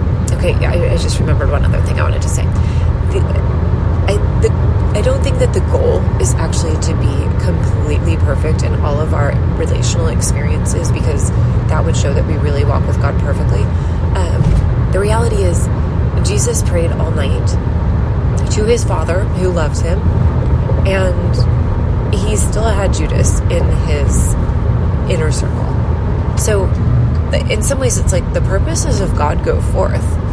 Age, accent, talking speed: 30-49, American, 150 wpm